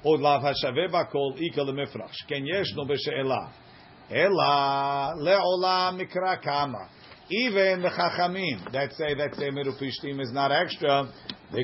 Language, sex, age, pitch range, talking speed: English, male, 50-69, 135-175 Hz, 140 wpm